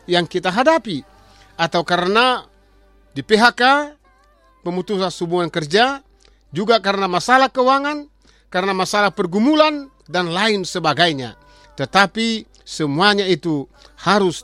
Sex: male